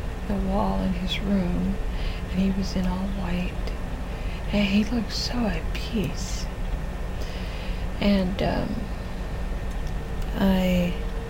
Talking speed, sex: 100 wpm, female